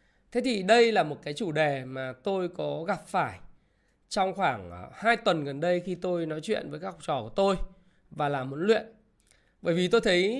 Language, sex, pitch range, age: Vietnamese, male, 160-215 Hz, 20-39